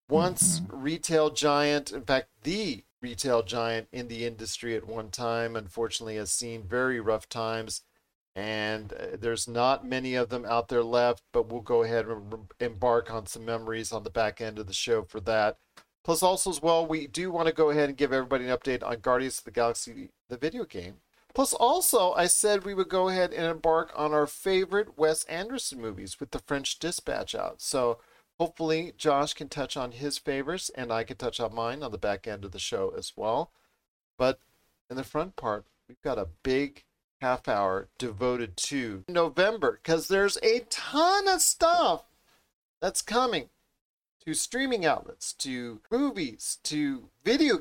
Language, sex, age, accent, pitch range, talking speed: English, male, 40-59, American, 115-170 Hz, 180 wpm